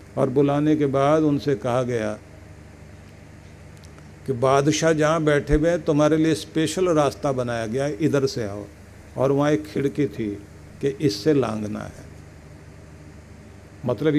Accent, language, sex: native, Hindi, male